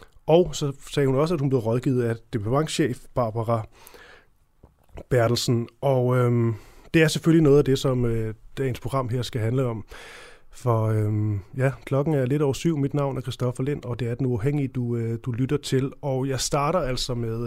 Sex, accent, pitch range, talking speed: male, native, 120-150 Hz, 195 wpm